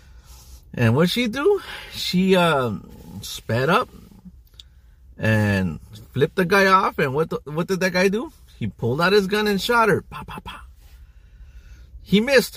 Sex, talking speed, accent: male, 160 wpm, American